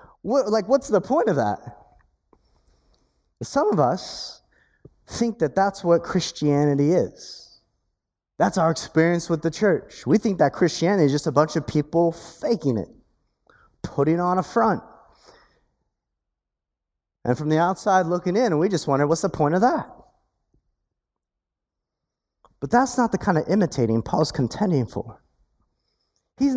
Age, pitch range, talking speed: 30-49, 135-195 Hz, 140 wpm